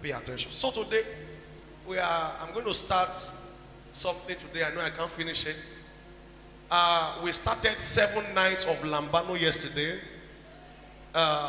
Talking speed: 140 wpm